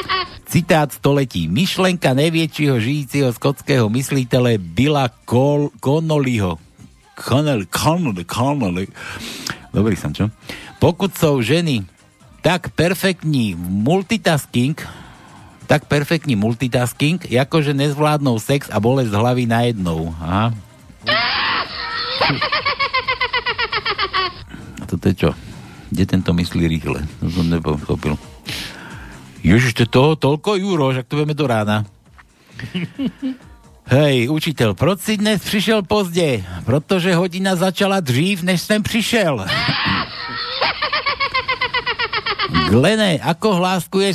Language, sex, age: Slovak, male, 60-79